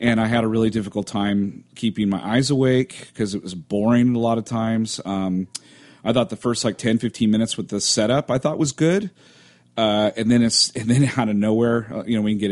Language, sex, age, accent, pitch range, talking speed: English, male, 40-59, American, 100-125 Hz, 235 wpm